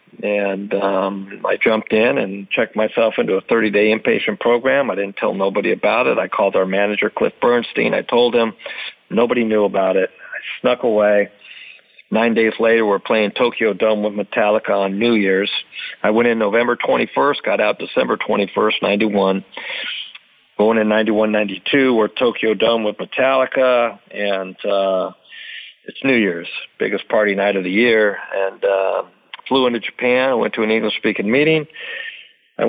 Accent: American